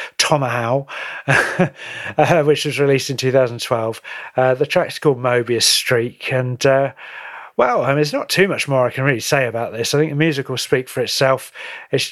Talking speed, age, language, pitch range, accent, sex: 185 wpm, 40-59, English, 125-165 Hz, British, male